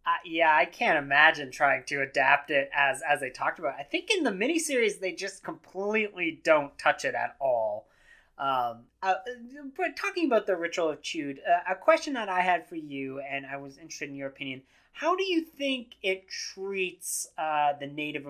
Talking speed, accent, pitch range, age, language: 195 wpm, American, 135-190 Hz, 20-39, English